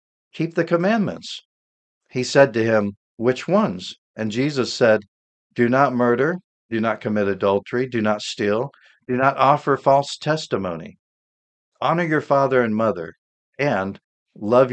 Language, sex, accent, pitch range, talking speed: English, male, American, 100-135 Hz, 140 wpm